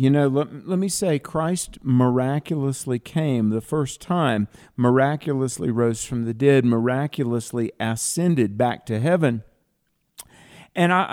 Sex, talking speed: male, 130 wpm